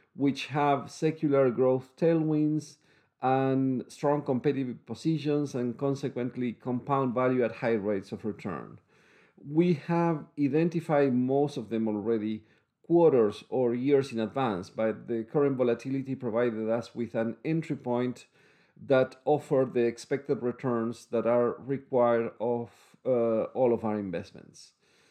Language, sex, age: English, male, 50-69